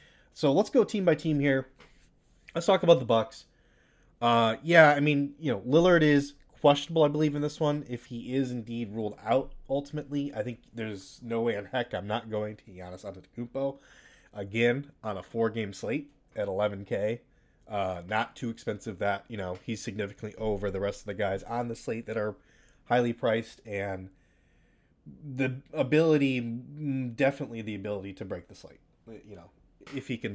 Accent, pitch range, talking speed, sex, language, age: American, 95-130 Hz, 180 wpm, male, English, 30-49